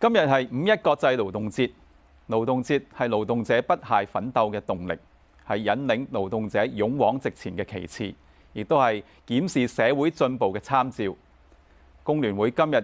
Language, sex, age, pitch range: Chinese, male, 30-49, 80-130 Hz